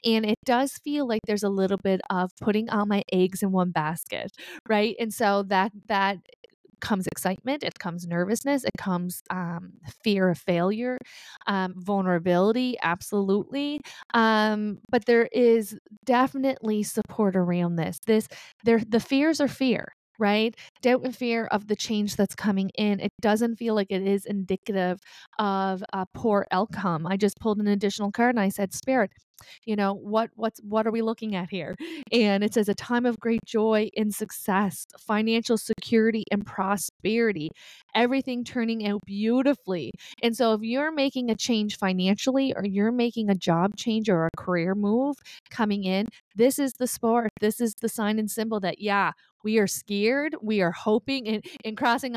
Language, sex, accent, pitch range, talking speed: English, female, American, 195-230 Hz, 170 wpm